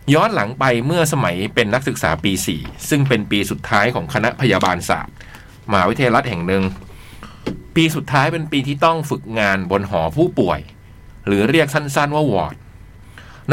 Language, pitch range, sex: Thai, 100-140 Hz, male